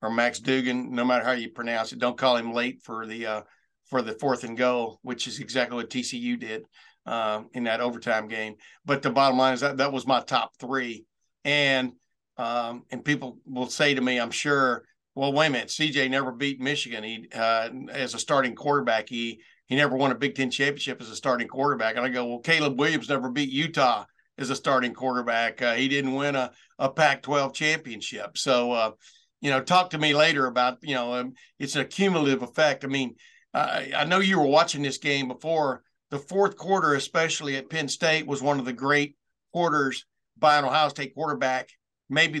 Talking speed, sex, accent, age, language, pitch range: 210 wpm, male, American, 50-69, English, 125-145 Hz